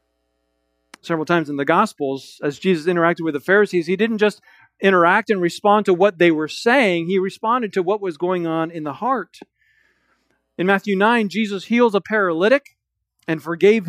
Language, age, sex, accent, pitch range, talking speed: English, 40-59, male, American, 160-210 Hz, 175 wpm